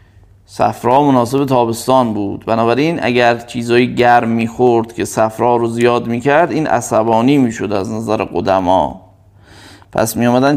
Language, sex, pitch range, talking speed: Persian, male, 110-150 Hz, 125 wpm